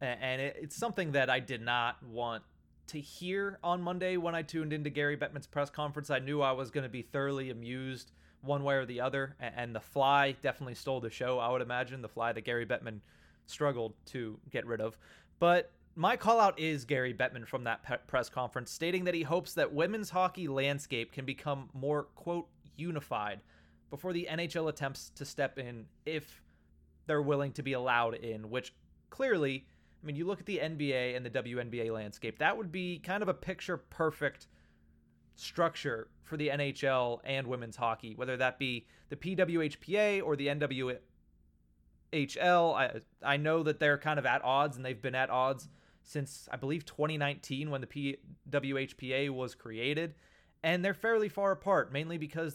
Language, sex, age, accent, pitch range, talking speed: English, male, 30-49, American, 120-155 Hz, 180 wpm